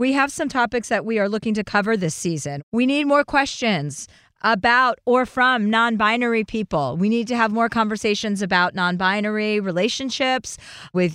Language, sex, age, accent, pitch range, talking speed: English, female, 40-59, American, 175-235 Hz, 165 wpm